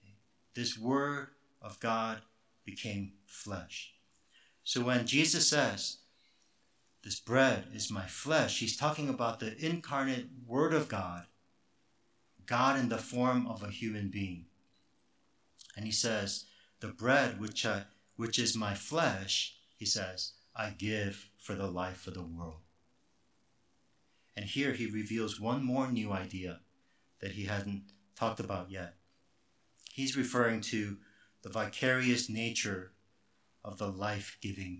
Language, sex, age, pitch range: English, male, 50-69, 95-125 Hz